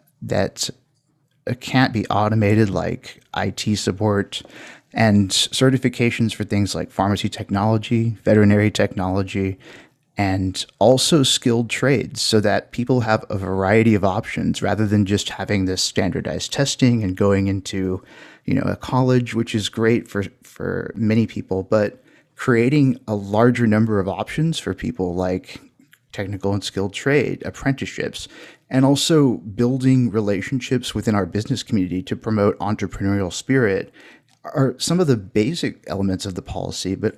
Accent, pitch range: American, 100-120 Hz